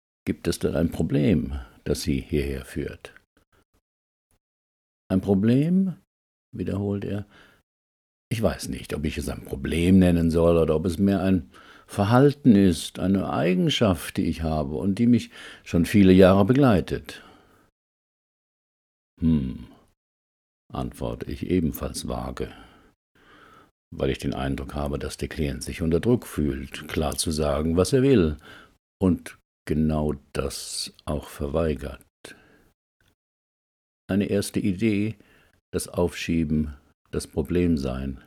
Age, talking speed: 60-79, 120 wpm